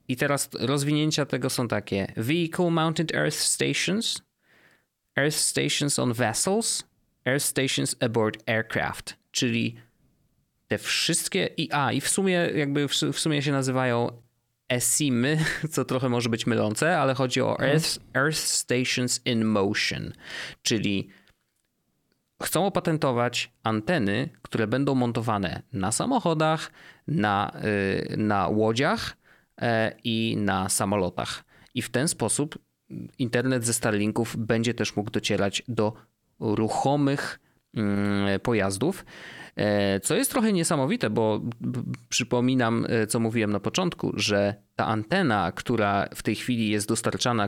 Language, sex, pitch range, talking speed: Polish, male, 105-135 Hz, 120 wpm